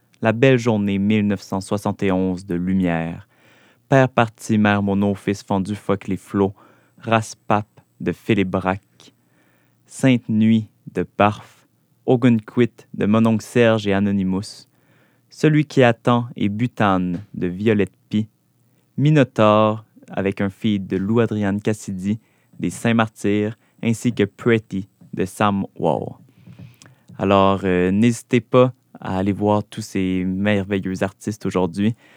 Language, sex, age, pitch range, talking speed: French, male, 20-39, 95-115 Hz, 120 wpm